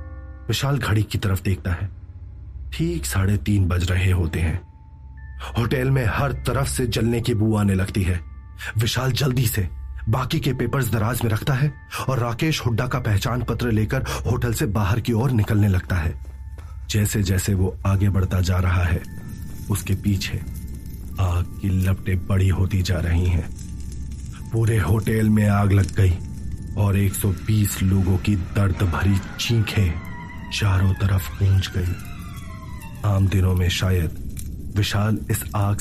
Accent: native